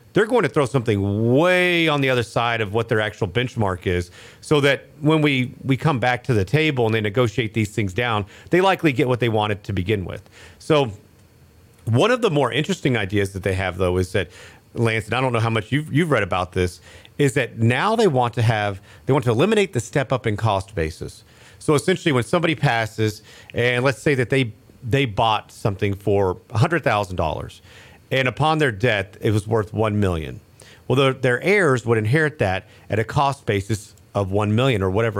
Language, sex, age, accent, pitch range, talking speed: English, male, 40-59, American, 100-135 Hz, 210 wpm